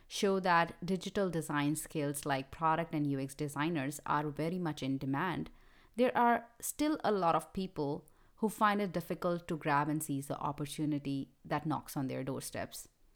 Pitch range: 145-190 Hz